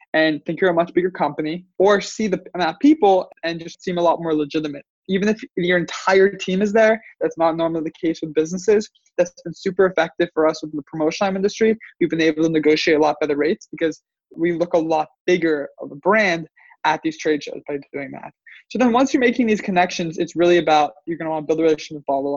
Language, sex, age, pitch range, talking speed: English, male, 20-39, 155-190 Hz, 240 wpm